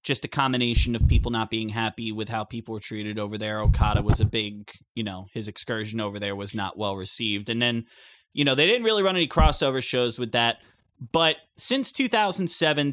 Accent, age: American, 30-49